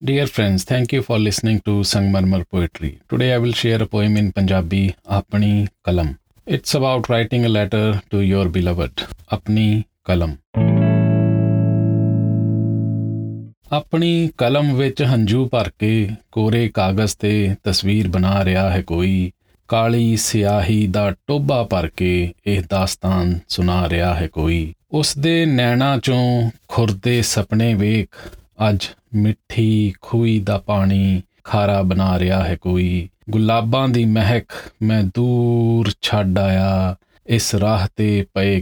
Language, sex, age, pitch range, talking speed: Punjabi, male, 40-59, 95-110 Hz, 125 wpm